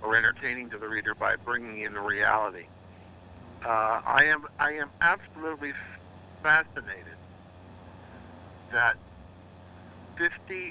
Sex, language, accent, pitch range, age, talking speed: male, English, American, 90-130 Hz, 60-79, 105 wpm